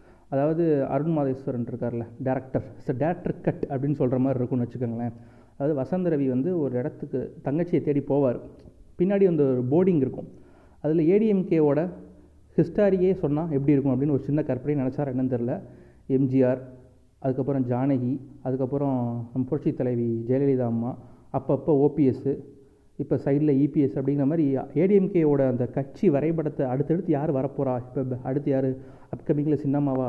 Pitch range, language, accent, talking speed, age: 130-155 Hz, Tamil, native, 135 wpm, 30-49